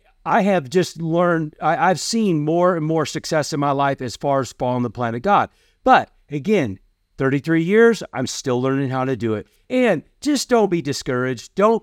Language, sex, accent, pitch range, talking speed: English, male, American, 145-190 Hz, 200 wpm